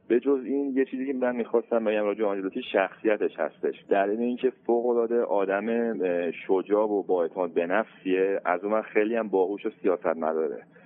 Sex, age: male, 30-49